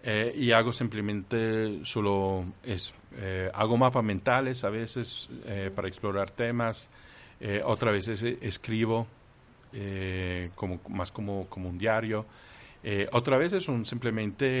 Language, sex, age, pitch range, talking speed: Spanish, male, 50-69, 100-125 Hz, 130 wpm